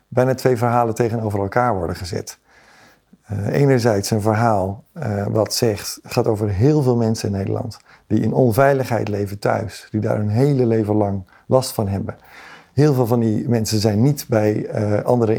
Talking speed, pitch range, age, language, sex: 165 wpm, 110-125 Hz, 50-69, Dutch, male